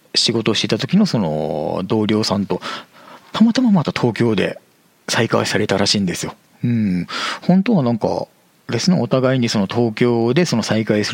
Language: Japanese